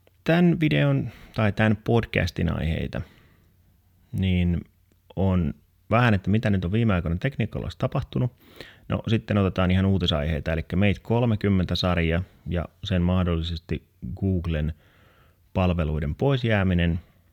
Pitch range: 85-105 Hz